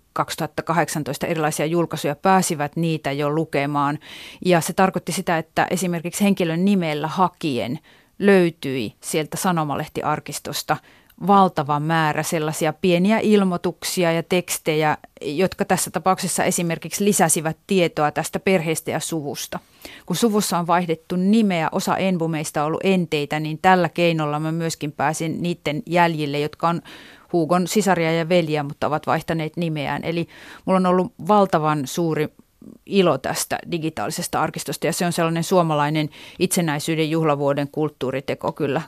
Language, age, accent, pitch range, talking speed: Finnish, 30-49, native, 150-180 Hz, 130 wpm